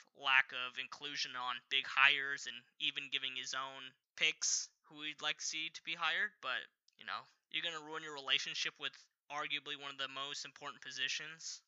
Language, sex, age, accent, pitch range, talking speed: English, male, 10-29, American, 145-200 Hz, 190 wpm